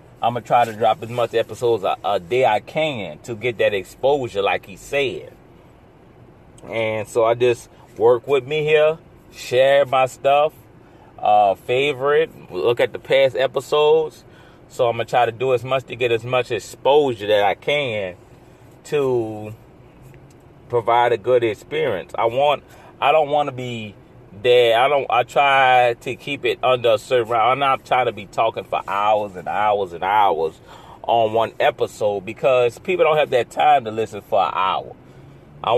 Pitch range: 115-150 Hz